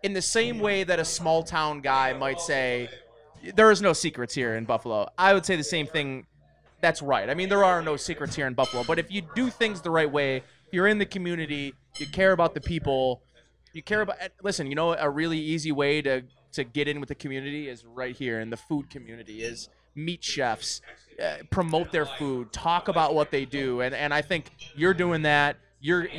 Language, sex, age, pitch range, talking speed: English, male, 20-39, 140-190 Hz, 220 wpm